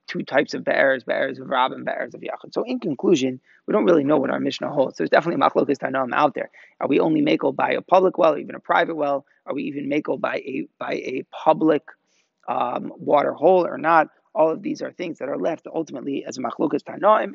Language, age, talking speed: English, 30-49, 230 wpm